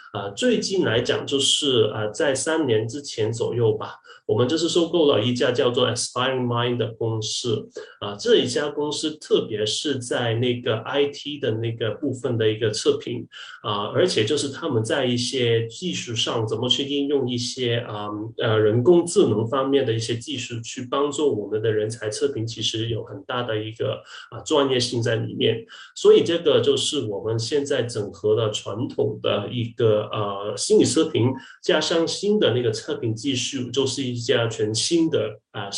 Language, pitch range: Chinese, 110-145 Hz